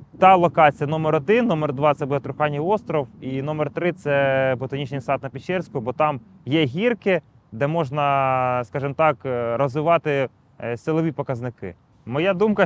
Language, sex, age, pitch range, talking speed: Ukrainian, male, 20-39, 130-160 Hz, 155 wpm